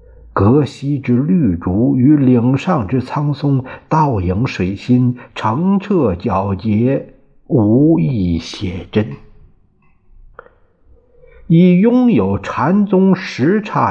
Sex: male